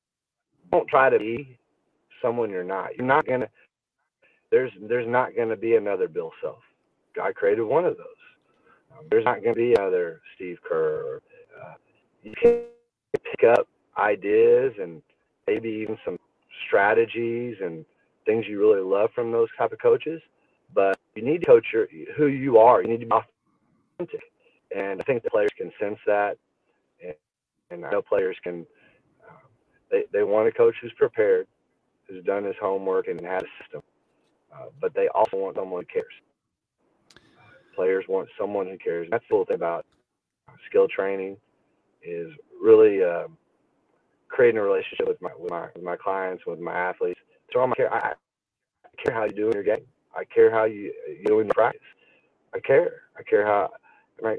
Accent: American